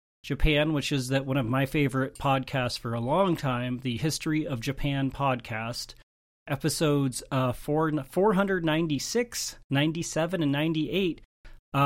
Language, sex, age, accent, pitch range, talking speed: English, male, 30-49, American, 120-145 Hz, 140 wpm